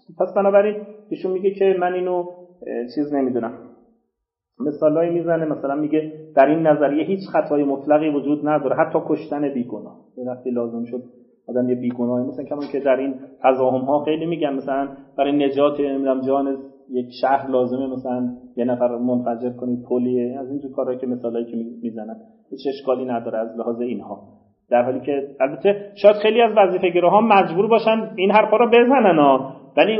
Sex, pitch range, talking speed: male, 135-185 Hz, 160 wpm